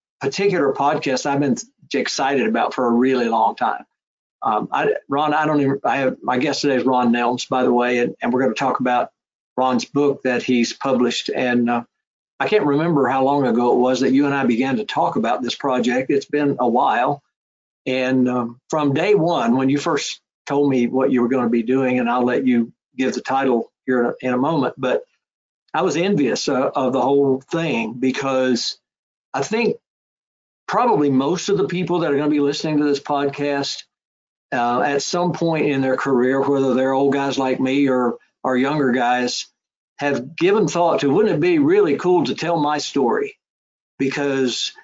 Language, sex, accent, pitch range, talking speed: English, male, American, 125-145 Hz, 200 wpm